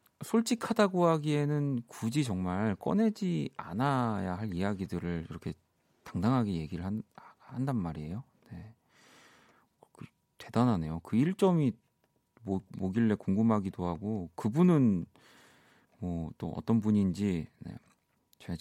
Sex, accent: male, native